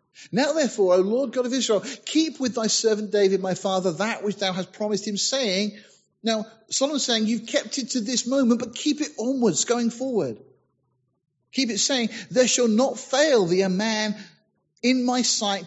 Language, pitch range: English, 165-225 Hz